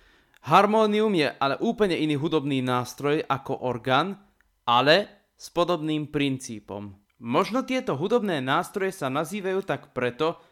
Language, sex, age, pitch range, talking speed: Slovak, male, 20-39, 130-185 Hz, 120 wpm